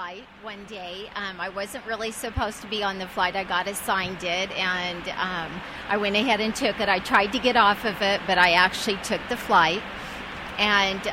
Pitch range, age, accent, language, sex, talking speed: 195-225 Hz, 40-59, American, English, female, 205 wpm